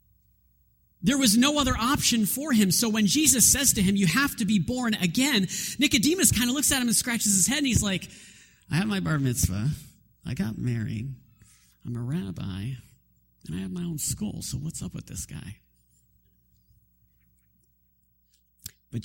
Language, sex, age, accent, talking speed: English, male, 40-59, American, 175 wpm